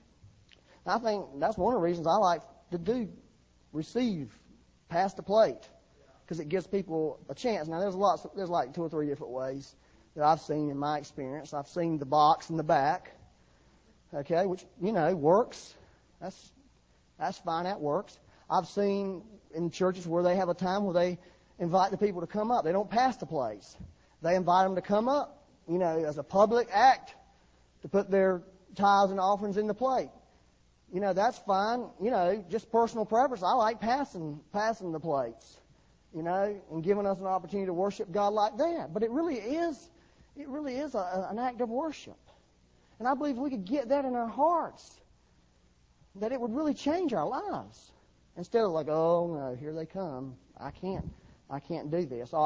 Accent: American